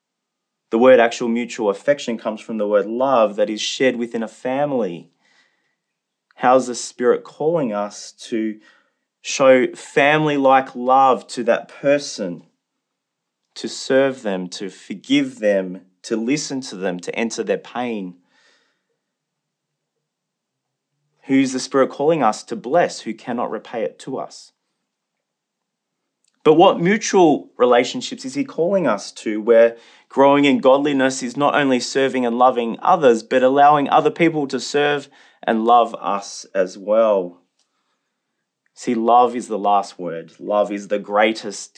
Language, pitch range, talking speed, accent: English, 110-140 Hz, 140 wpm, Australian